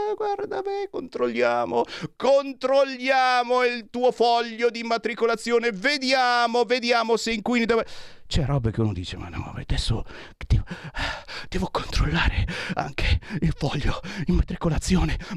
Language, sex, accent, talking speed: Italian, male, native, 115 wpm